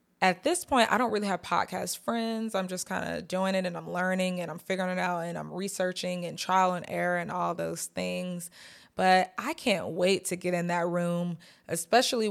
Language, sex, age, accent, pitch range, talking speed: English, female, 20-39, American, 170-195 Hz, 215 wpm